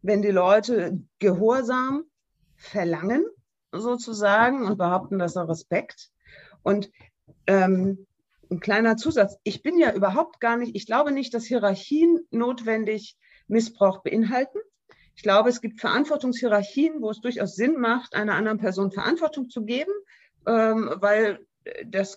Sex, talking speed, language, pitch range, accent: female, 135 wpm, German, 190-250 Hz, German